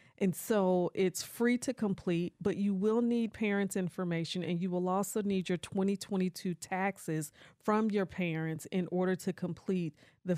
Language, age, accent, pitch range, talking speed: English, 40-59, American, 175-205 Hz, 160 wpm